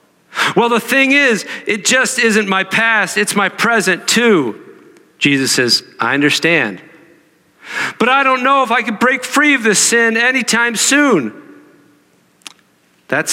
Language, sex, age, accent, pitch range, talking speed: English, male, 50-69, American, 135-215 Hz, 145 wpm